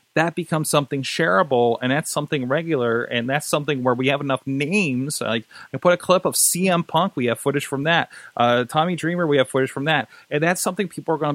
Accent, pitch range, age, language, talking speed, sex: American, 130-165 Hz, 30-49, English, 225 wpm, male